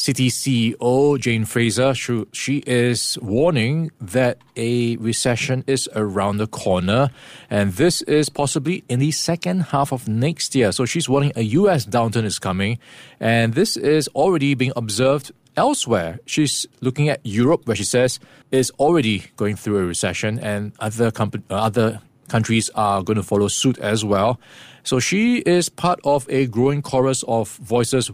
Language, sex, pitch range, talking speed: English, male, 110-135 Hz, 160 wpm